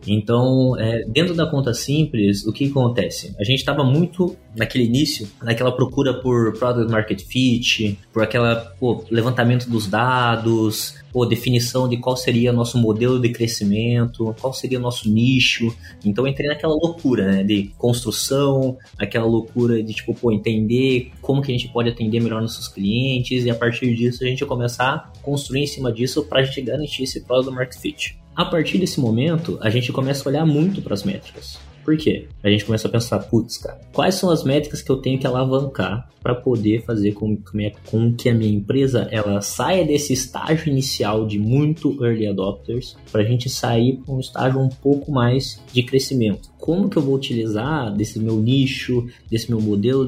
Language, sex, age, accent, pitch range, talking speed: Portuguese, male, 20-39, Brazilian, 110-130 Hz, 185 wpm